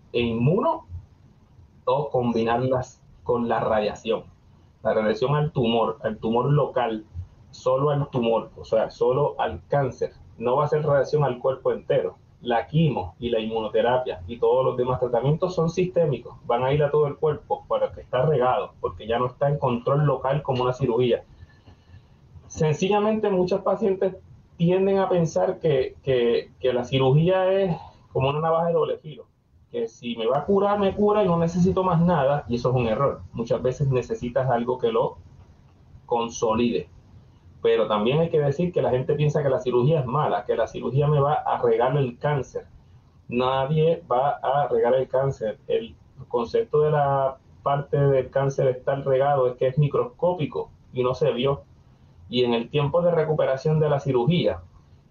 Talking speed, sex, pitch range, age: 175 wpm, male, 125-180 Hz, 30-49